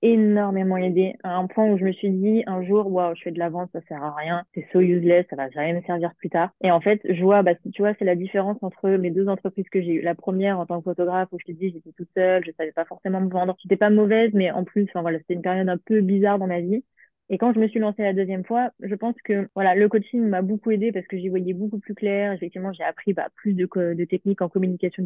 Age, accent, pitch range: 20-39, French, 180-210 Hz